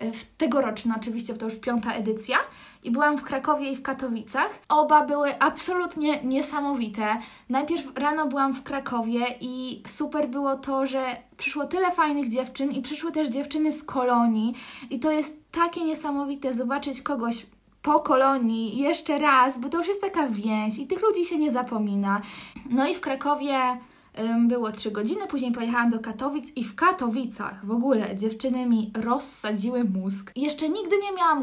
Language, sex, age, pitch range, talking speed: Polish, female, 20-39, 235-295 Hz, 160 wpm